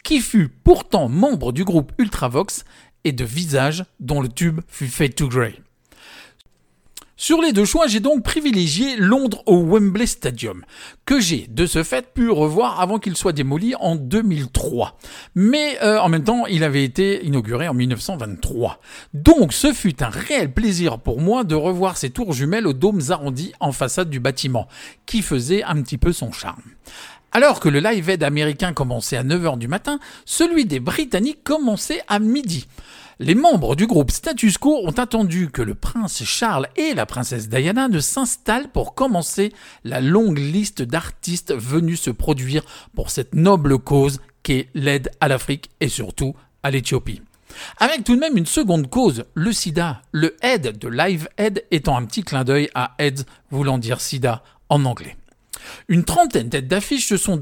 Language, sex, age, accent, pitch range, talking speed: French, male, 50-69, French, 140-220 Hz, 175 wpm